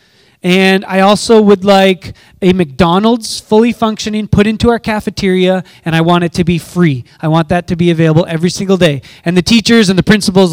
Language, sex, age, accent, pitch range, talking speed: English, male, 20-39, American, 180-230 Hz, 200 wpm